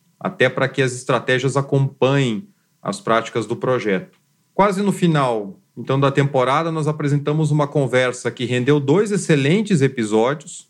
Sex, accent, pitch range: male, Brazilian, 125-165 Hz